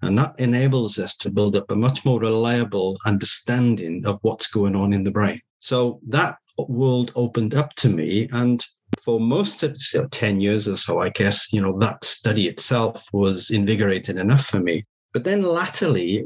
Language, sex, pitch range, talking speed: English, male, 100-125 Hz, 190 wpm